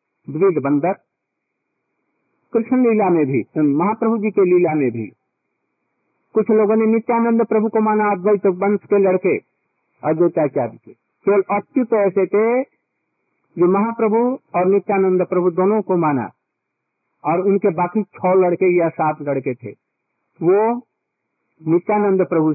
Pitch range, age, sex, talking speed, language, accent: 165-215 Hz, 50-69, male, 120 wpm, Hindi, native